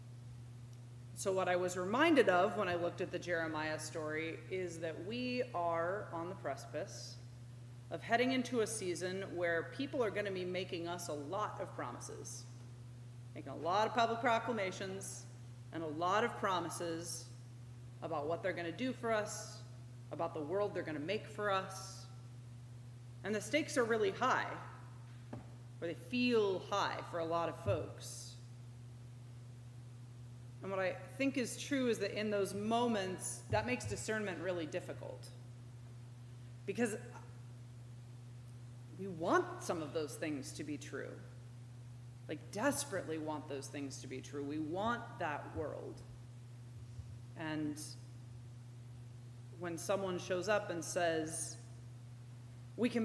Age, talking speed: 30-49, 145 wpm